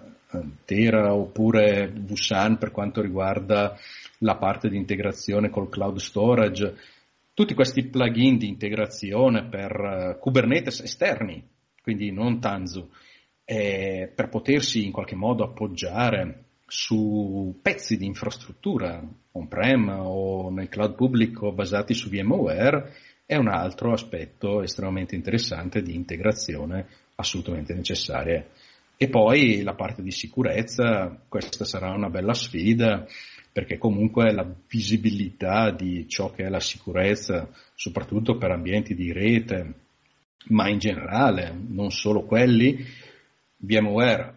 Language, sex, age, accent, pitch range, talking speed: Italian, male, 40-59, native, 95-110 Hz, 115 wpm